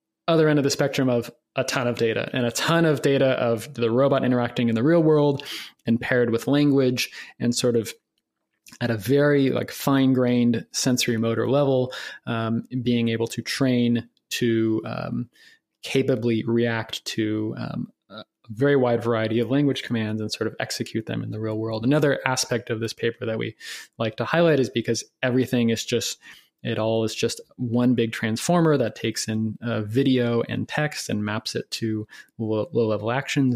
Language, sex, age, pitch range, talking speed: English, male, 20-39, 115-135 Hz, 180 wpm